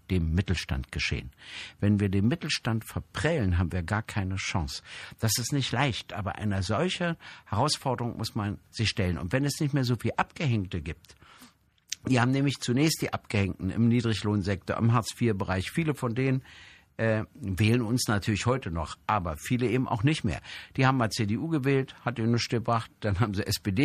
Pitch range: 95-125 Hz